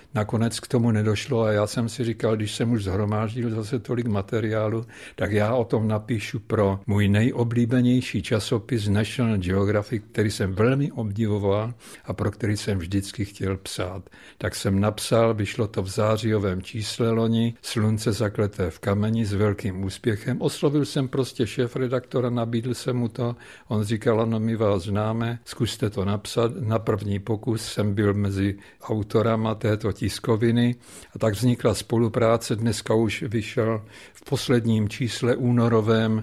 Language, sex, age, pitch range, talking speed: Czech, male, 60-79, 100-115 Hz, 150 wpm